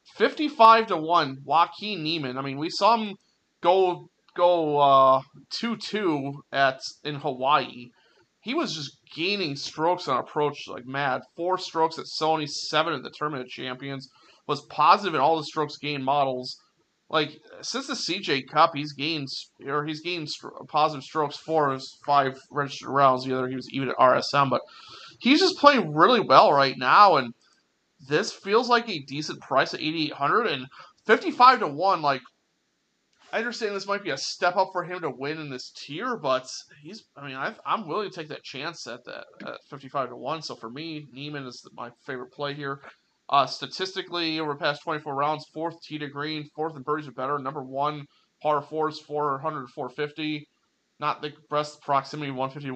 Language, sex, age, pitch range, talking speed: English, male, 30-49, 140-170 Hz, 180 wpm